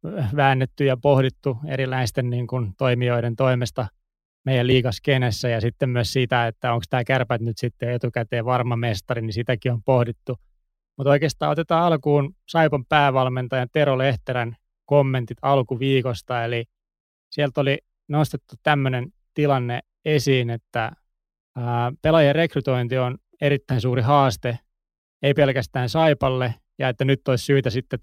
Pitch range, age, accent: 120-135 Hz, 20-39, native